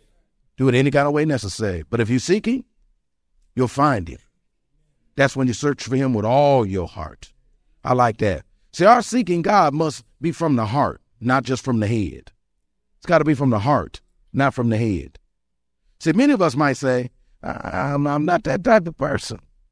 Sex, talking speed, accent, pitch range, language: male, 200 wpm, American, 110-160 Hz, English